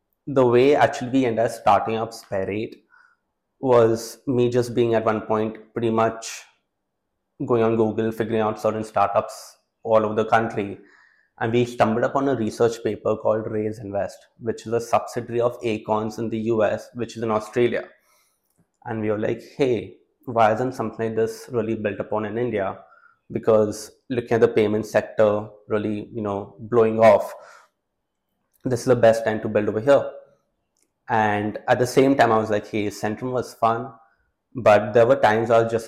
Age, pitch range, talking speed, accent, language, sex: 20-39, 105-120 Hz, 180 wpm, Indian, English, male